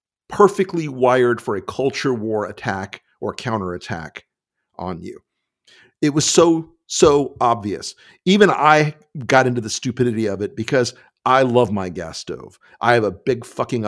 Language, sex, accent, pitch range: English, male, American, 100-130 Hz